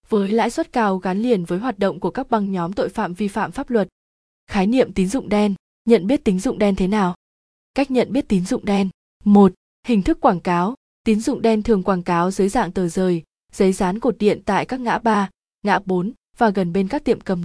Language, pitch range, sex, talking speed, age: Vietnamese, 195-230 Hz, female, 235 wpm, 20-39